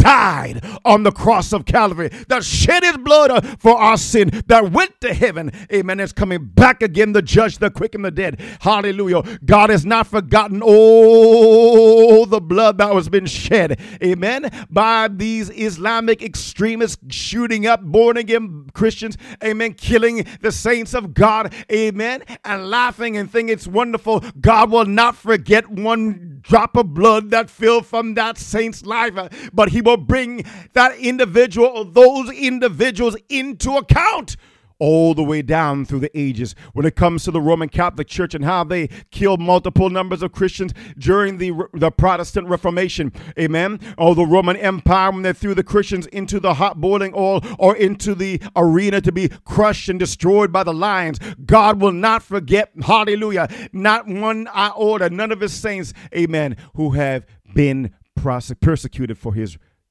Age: 50-69